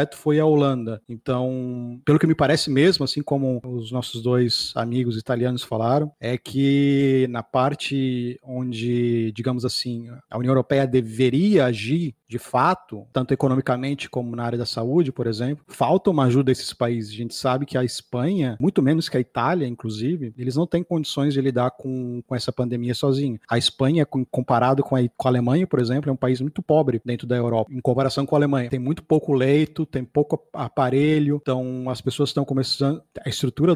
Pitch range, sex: 125-145 Hz, male